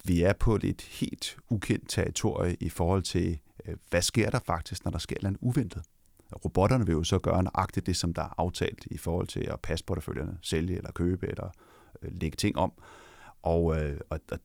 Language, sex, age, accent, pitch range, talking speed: Danish, male, 30-49, native, 85-110 Hz, 185 wpm